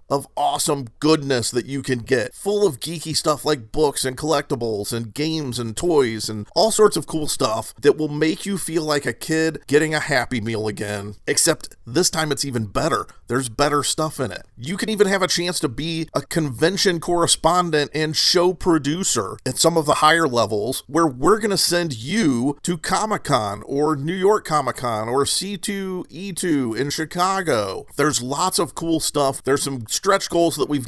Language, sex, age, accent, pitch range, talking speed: English, male, 40-59, American, 125-165 Hz, 185 wpm